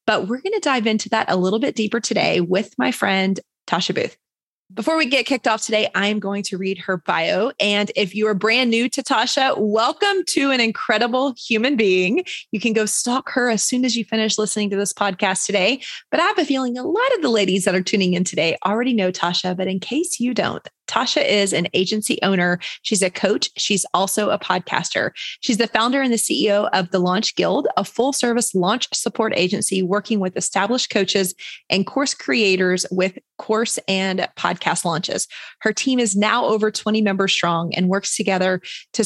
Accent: American